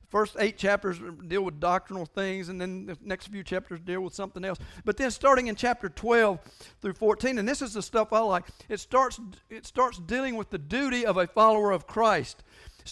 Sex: male